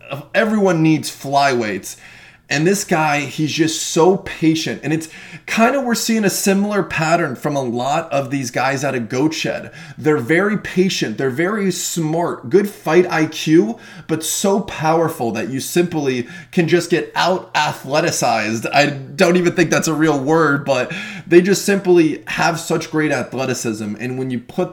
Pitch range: 135-175 Hz